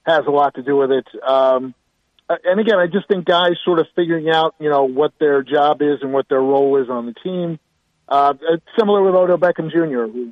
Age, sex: 40-59, male